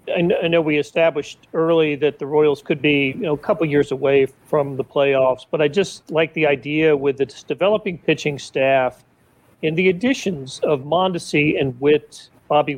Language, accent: English, American